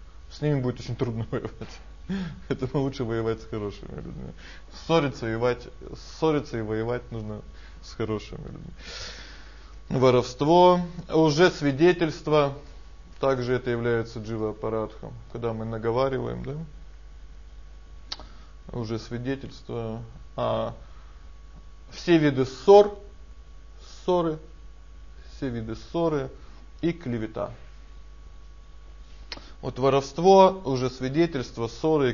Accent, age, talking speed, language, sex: native, 20-39, 90 wpm, Russian, male